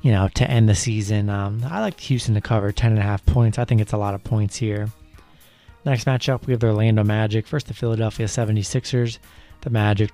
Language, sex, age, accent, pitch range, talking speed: English, male, 30-49, American, 105-120 Hz, 225 wpm